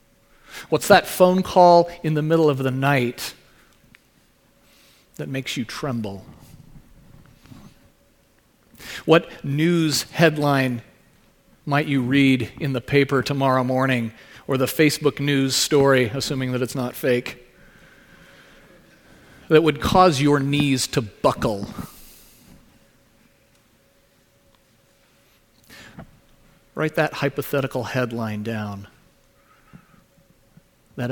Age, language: 40-59, English